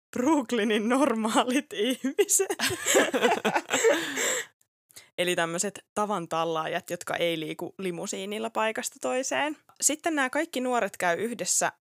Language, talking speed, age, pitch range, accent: Finnish, 90 wpm, 20-39, 185-240 Hz, native